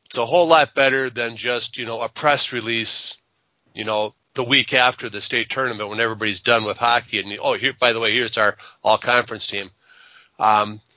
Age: 30-49